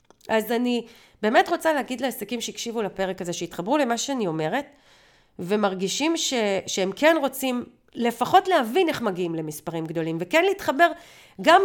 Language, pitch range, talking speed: Hebrew, 200-290 Hz, 135 wpm